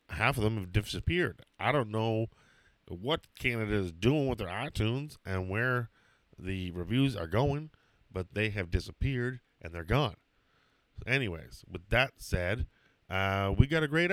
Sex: male